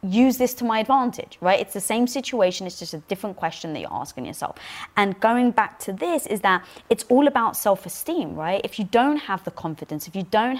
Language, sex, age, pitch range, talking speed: English, female, 20-39, 180-230 Hz, 225 wpm